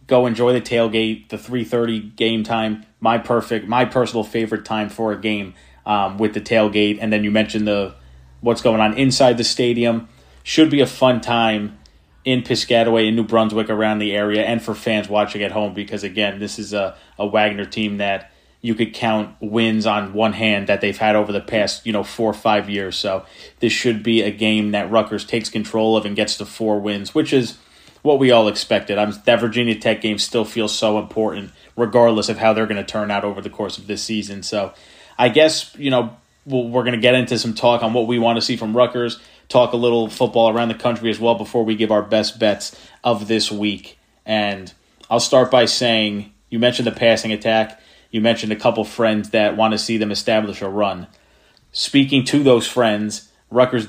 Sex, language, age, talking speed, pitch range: male, English, 30-49, 210 wpm, 105-115 Hz